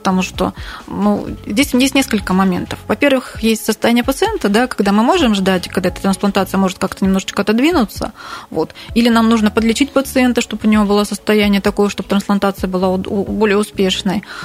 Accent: native